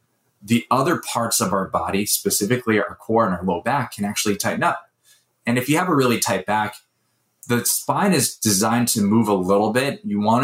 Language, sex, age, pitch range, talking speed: English, male, 20-39, 105-125 Hz, 205 wpm